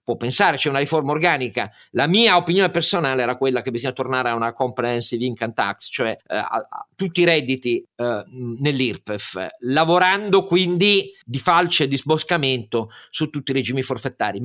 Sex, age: male, 50-69